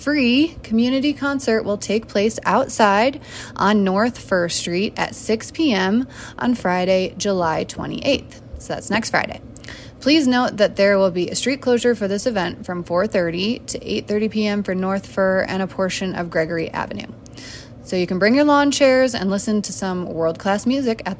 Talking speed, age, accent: 175 wpm, 20-39, American